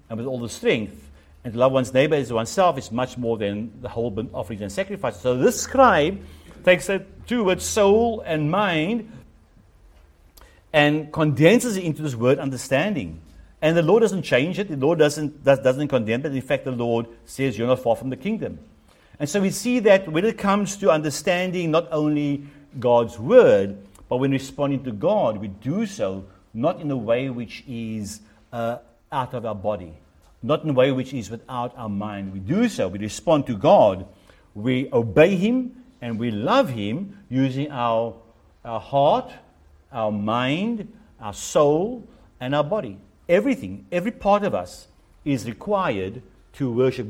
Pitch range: 110-160 Hz